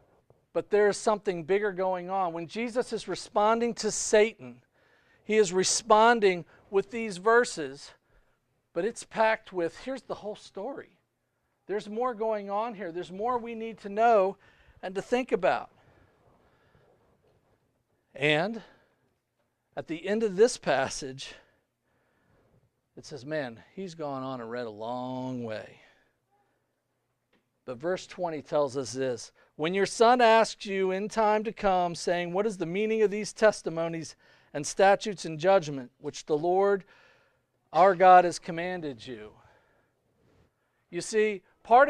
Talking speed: 140 wpm